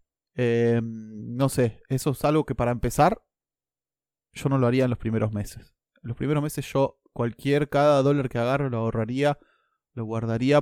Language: Spanish